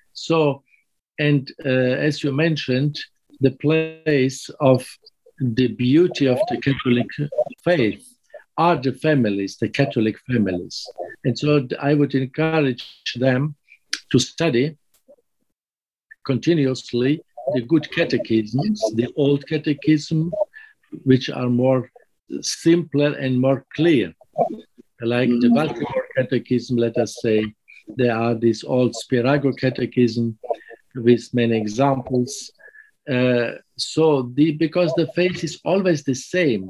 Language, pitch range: English, 125-155 Hz